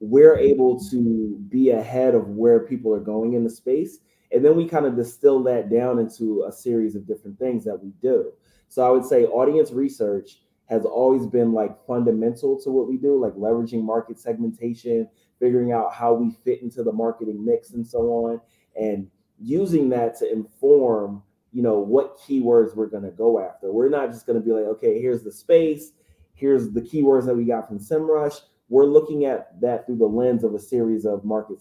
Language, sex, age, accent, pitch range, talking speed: English, male, 20-39, American, 110-135 Hz, 200 wpm